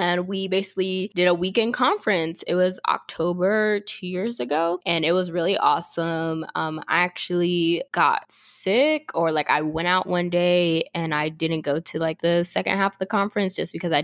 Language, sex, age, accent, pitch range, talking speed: English, female, 10-29, American, 165-200 Hz, 190 wpm